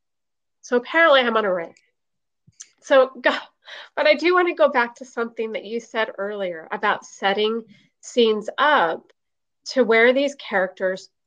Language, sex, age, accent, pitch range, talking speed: English, female, 30-49, American, 190-245 Hz, 150 wpm